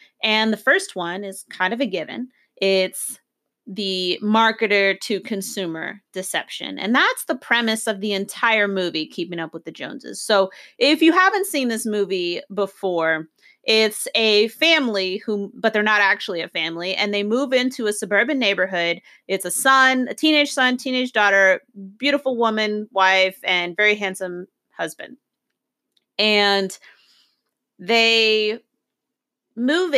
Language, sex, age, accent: English, female, 30-49, American